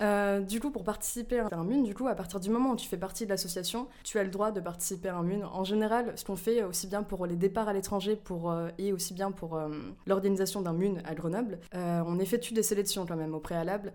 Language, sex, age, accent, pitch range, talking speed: French, female, 20-39, French, 170-205 Hz, 255 wpm